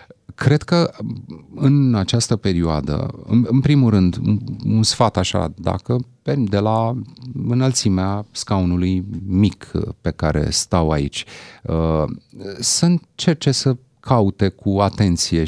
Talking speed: 110 wpm